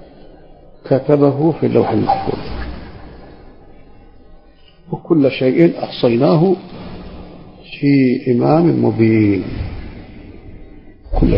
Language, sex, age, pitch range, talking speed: Arabic, male, 50-69, 125-160 Hz, 60 wpm